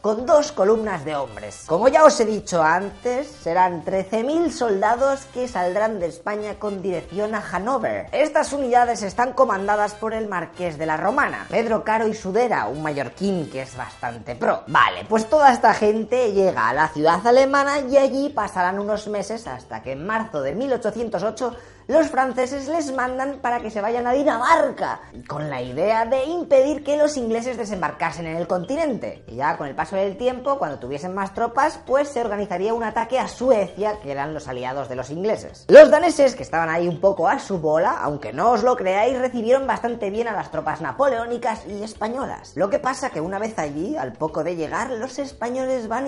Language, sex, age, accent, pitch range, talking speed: English, female, 20-39, Spanish, 180-260 Hz, 195 wpm